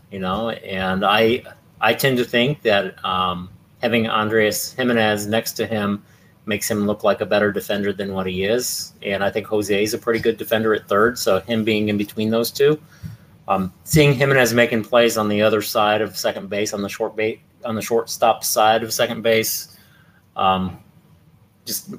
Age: 30-49